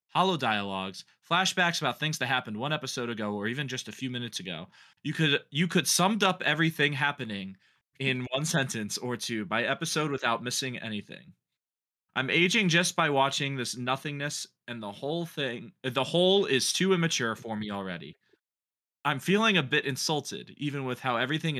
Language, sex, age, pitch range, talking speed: English, male, 20-39, 110-150 Hz, 175 wpm